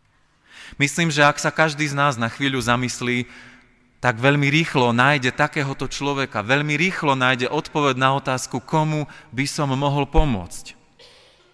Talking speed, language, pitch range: 140 wpm, Slovak, 115-145 Hz